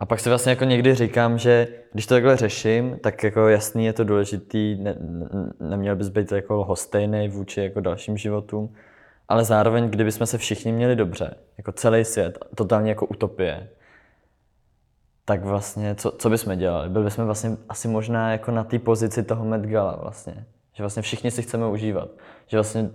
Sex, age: male, 20-39